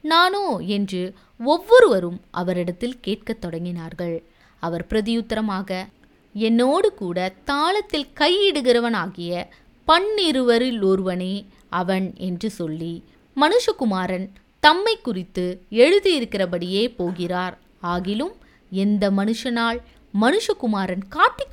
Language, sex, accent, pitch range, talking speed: Tamil, female, native, 180-240 Hz, 75 wpm